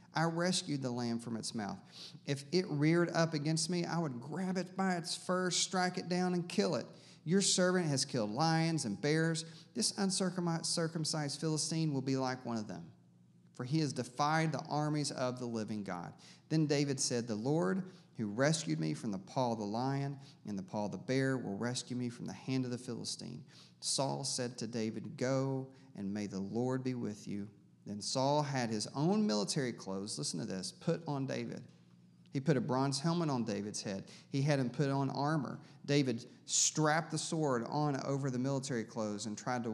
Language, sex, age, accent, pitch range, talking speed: English, male, 40-59, American, 115-165 Hz, 200 wpm